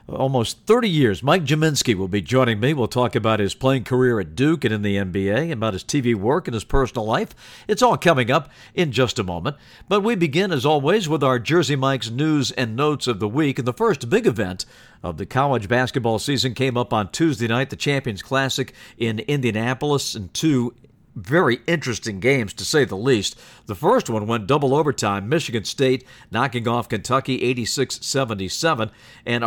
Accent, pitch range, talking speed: American, 110-145 Hz, 195 wpm